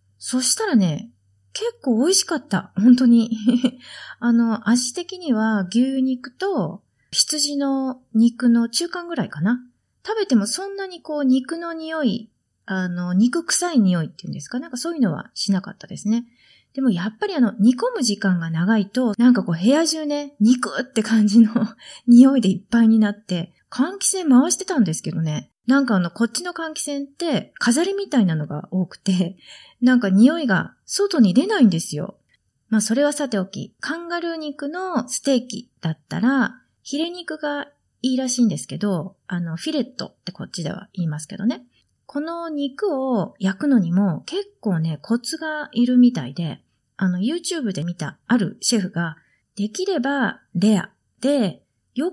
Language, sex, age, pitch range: Japanese, female, 30-49, 195-285 Hz